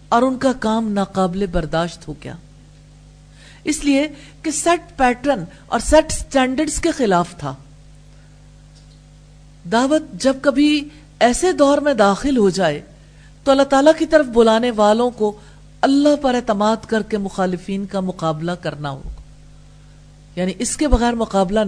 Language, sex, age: English, female, 50-69